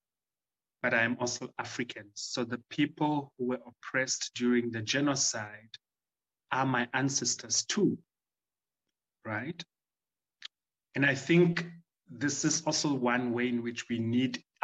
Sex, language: male, German